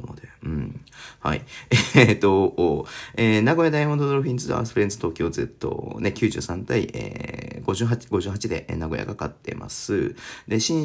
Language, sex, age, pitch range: Japanese, male, 40-59, 85-120 Hz